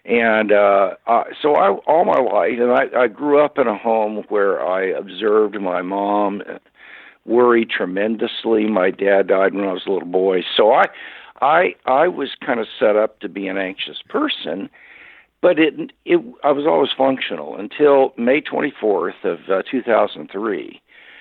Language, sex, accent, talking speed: English, male, American, 165 wpm